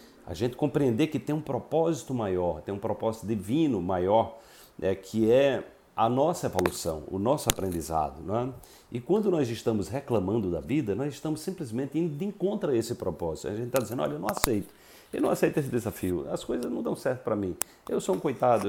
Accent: Brazilian